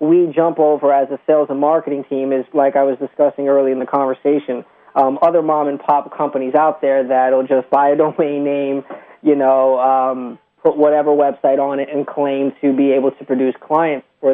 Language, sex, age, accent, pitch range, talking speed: English, male, 20-39, American, 135-155 Hz, 205 wpm